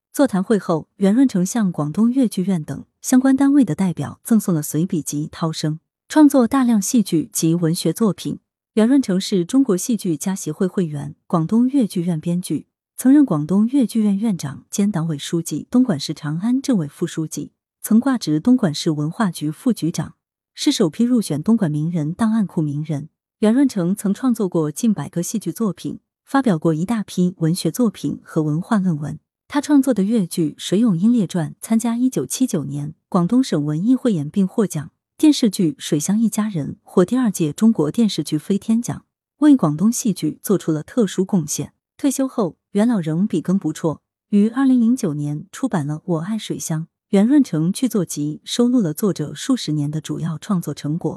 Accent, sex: native, female